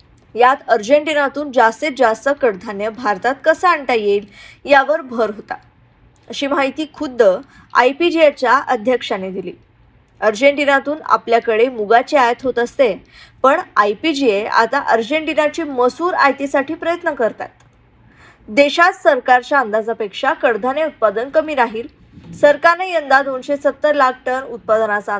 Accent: native